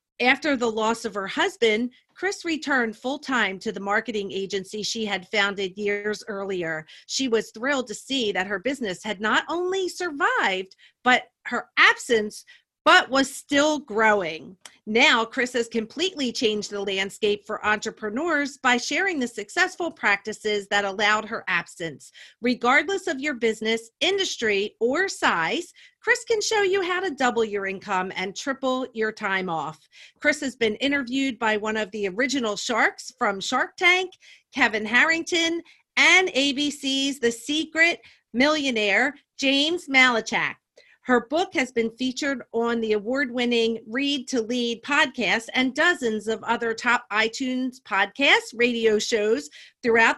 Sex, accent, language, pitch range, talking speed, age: female, American, English, 215-295 Hz, 145 wpm, 40-59